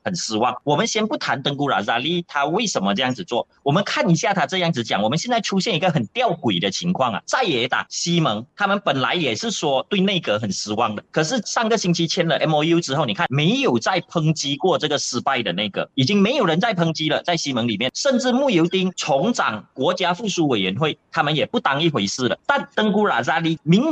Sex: male